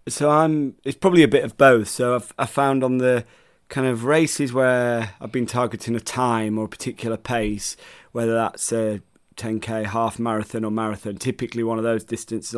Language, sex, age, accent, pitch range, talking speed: English, male, 30-49, British, 110-125 Hz, 190 wpm